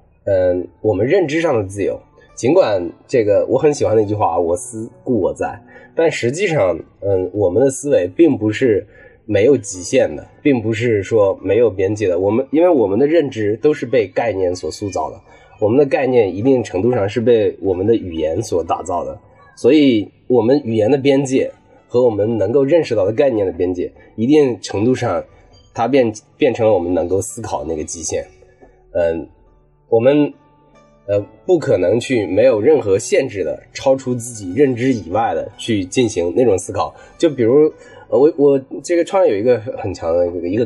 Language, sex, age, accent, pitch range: Chinese, male, 20-39, native, 105-170 Hz